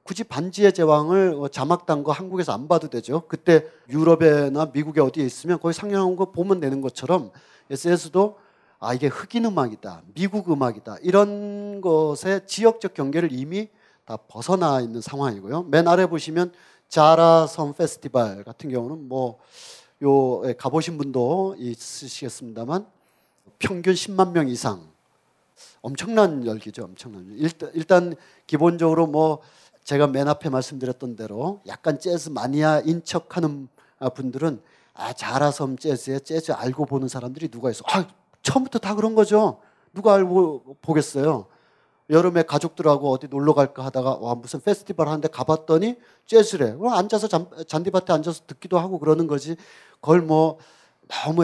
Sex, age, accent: male, 40-59, native